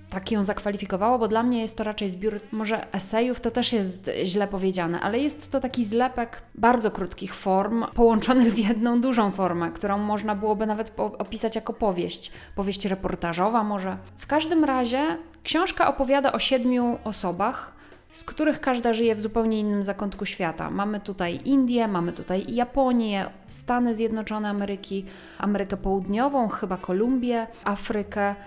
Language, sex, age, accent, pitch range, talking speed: Polish, female, 30-49, native, 200-245 Hz, 150 wpm